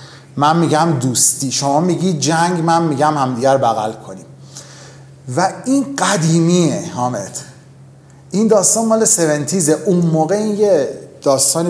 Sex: male